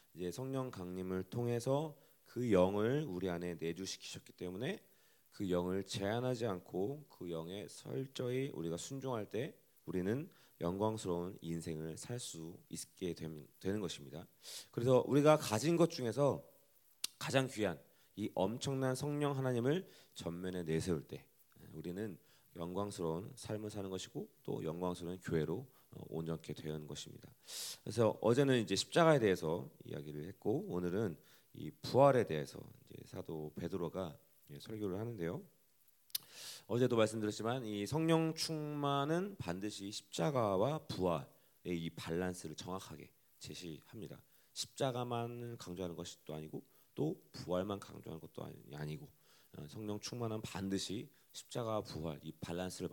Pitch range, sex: 85-125 Hz, male